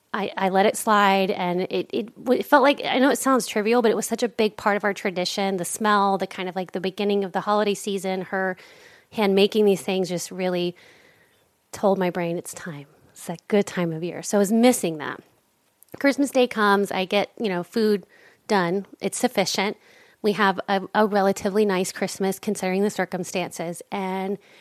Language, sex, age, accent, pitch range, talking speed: English, female, 30-49, American, 180-215 Hz, 200 wpm